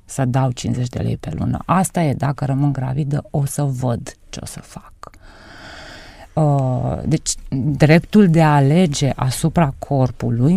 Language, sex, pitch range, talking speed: Romanian, female, 130-170 Hz, 150 wpm